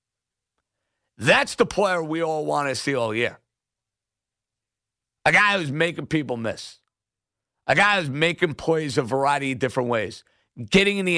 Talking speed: 155 wpm